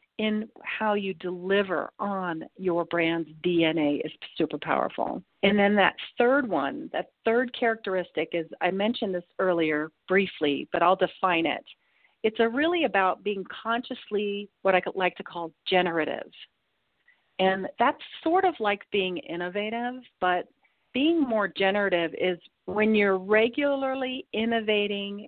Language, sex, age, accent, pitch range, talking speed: English, female, 40-59, American, 170-215 Hz, 135 wpm